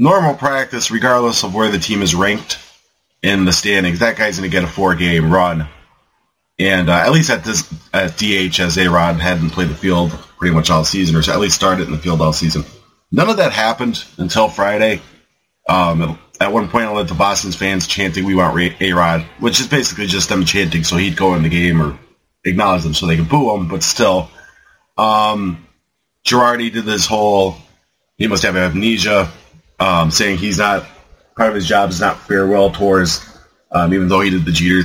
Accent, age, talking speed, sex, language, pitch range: American, 30-49, 200 wpm, male, English, 85-100 Hz